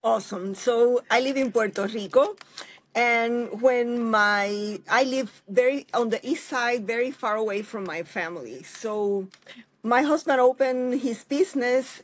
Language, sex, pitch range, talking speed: English, female, 210-255 Hz, 145 wpm